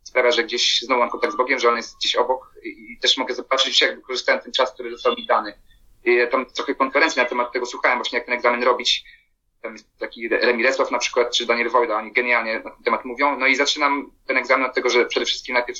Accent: native